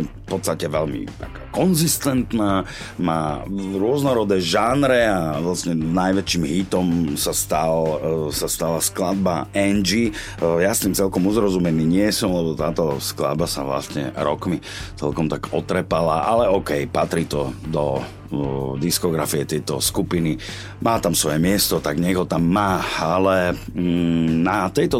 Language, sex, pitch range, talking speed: Slovak, male, 80-100 Hz, 130 wpm